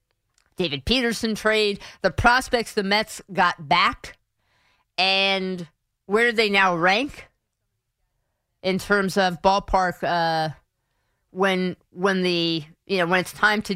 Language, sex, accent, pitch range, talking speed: English, female, American, 160-200 Hz, 125 wpm